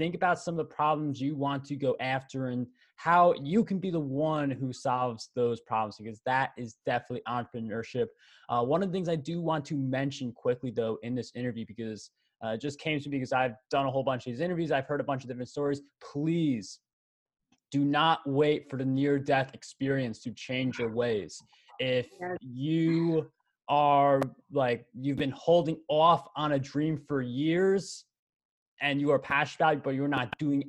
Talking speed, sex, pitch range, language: 200 wpm, male, 130-150 Hz, English